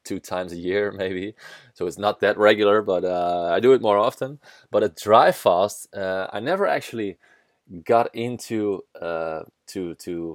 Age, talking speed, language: 20-39, 175 wpm, English